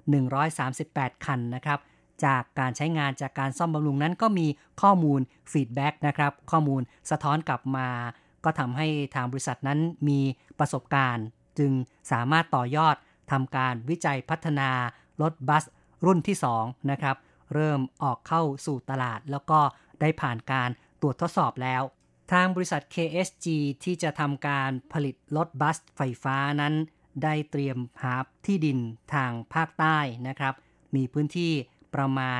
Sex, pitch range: female, 135-155 Hz